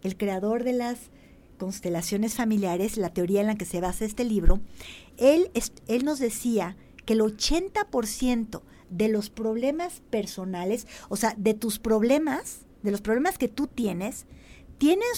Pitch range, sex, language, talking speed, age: 210-280 Hz, female, Spanish, 150 wpm, 50-69